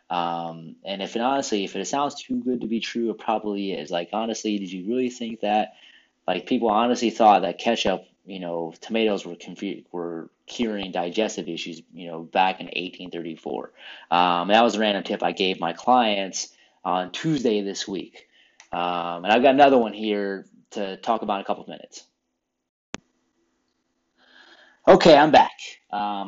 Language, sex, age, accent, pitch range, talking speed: English, male, 30-49, American, 95-115 Hz, 175 wpm